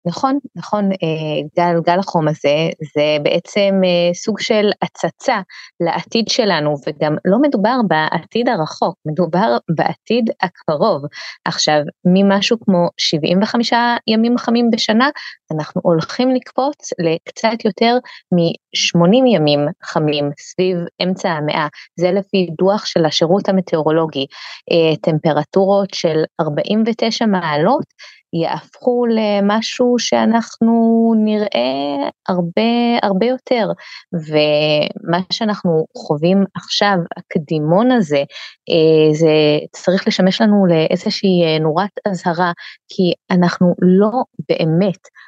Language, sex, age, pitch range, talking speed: Hebrew, female, 20-39, 160-215 Hz, 95 wpm